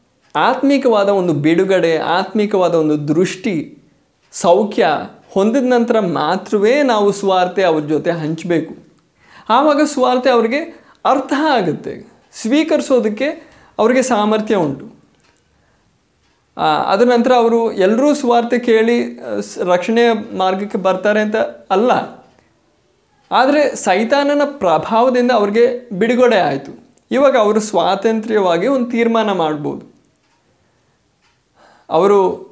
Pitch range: 180-250 Hz